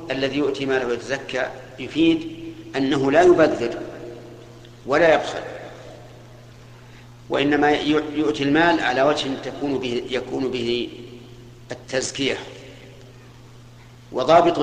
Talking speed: 80 wpm